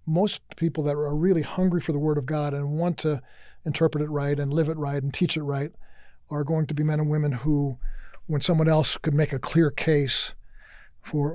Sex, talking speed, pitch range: male, 220 wpm, 145-165 Hz